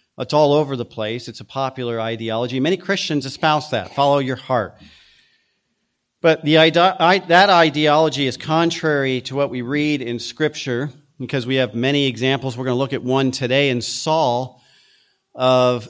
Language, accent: English, American